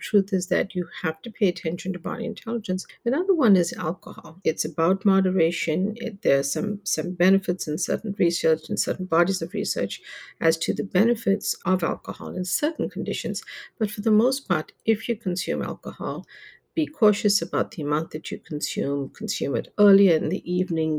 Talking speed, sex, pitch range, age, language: 180 wpm, female, 175-215 Hz, 60-79, English